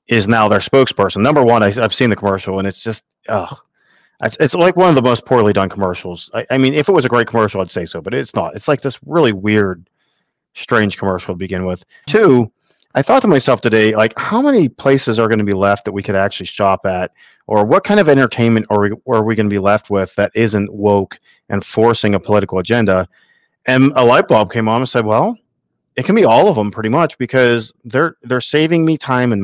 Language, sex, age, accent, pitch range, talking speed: English, male, 40-59, American, 100-120 Hz, 240 wpm